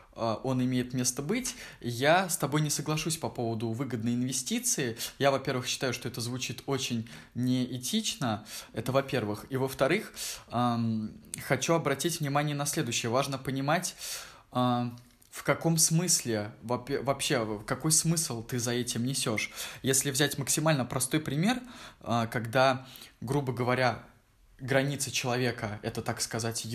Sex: male